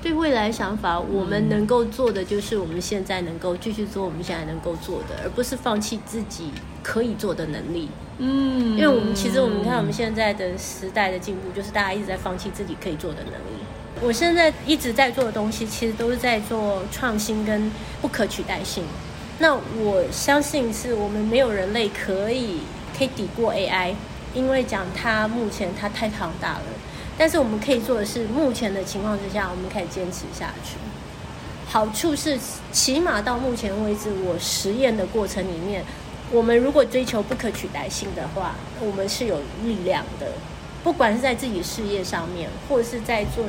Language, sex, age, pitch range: Chinese, female, 30-49, 195-245 Hz